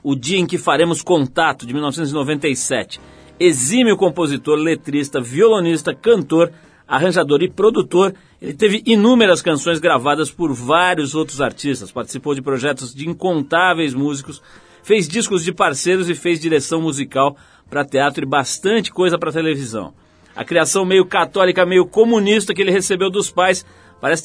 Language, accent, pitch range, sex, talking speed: Portuguese, Brazilian, 140-185 Hz, male, 145 wpm